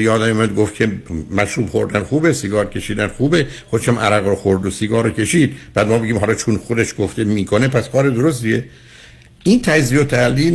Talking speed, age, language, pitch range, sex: 190 wpm, 60-79, Persian, 95-130 Hz, male